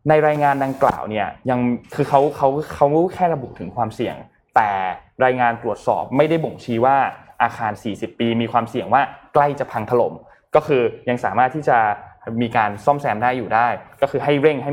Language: Thai